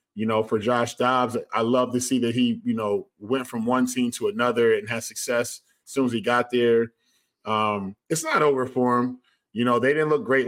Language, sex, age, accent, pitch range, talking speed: English, male, 20-39, American, 115-130 Hz, 230 wpm